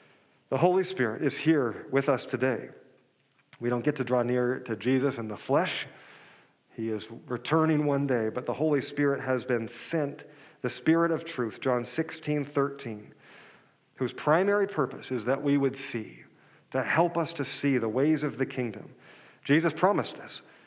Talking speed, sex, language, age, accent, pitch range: 170 wpm, male, English, 40-59, American, 125-155 Hz